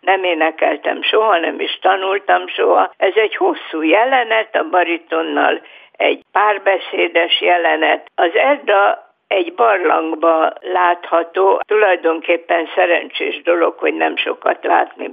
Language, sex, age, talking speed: Hungarian, female, 60-79, 110 wpm